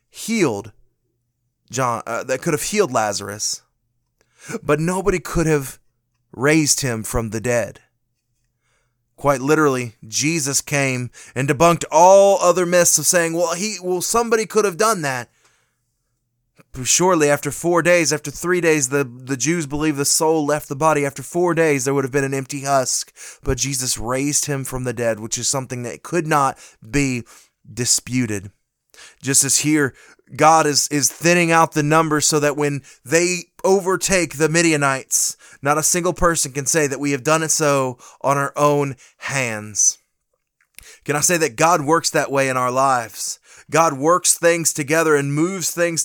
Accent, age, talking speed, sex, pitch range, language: American, 20-39, 165 wpm, male, 125-165 Hz, English